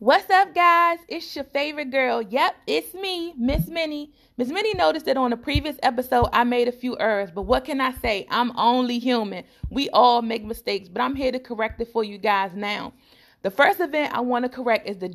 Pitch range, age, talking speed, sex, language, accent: 215-260 Hz, 30-49, 220 wpm, female, English, American